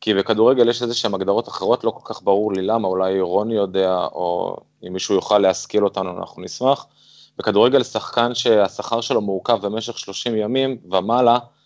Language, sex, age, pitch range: Hebrew, male, 20-39, 95-115 Hz